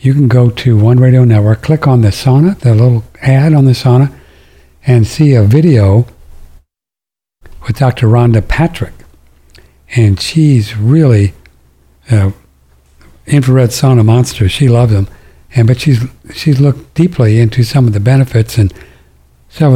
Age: 60-79